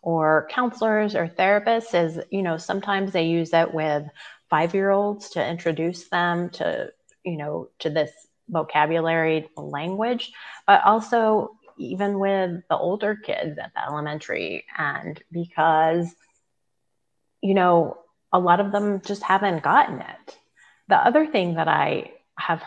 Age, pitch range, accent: 30-49, 155-190 Hz, American